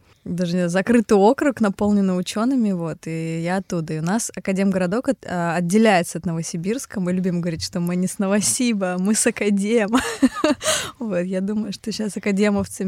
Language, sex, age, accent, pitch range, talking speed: Russian, female, 20-39, native, 175-210 Hz, 160 wpm